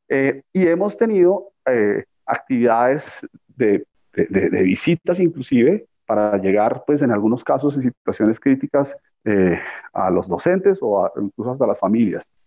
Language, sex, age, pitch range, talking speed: Spanish, male, 40-59, 115-165 Hz, 145 wpm